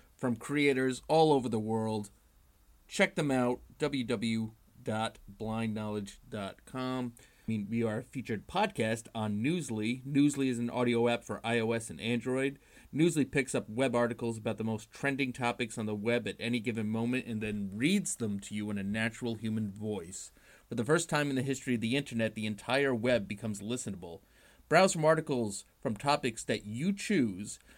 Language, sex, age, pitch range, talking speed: English, male, 30-49, 110-135 Hz, 170 wpm